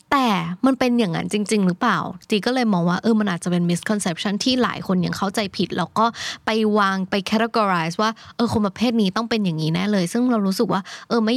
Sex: female